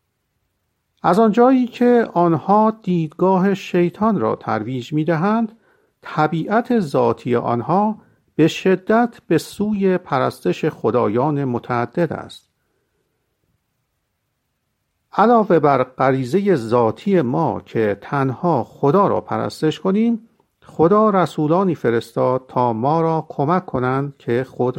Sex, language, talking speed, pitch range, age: male, Persian, 100 wpm, 125-185 Hz, 50-69